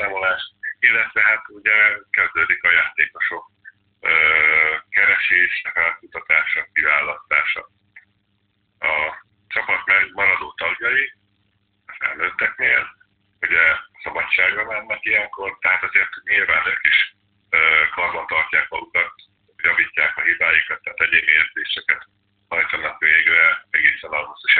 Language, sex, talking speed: Hungarian, male, 95 wpm